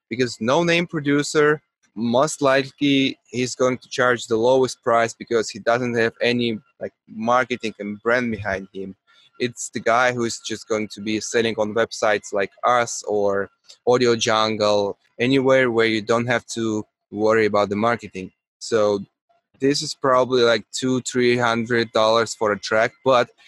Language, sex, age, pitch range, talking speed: English, male, 20-39, 105-125 Hz, 160 wpm